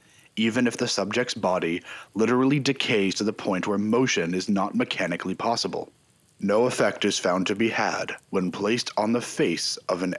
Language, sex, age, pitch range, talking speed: English, male, 30-49, 95-125 Hz, 175 wpm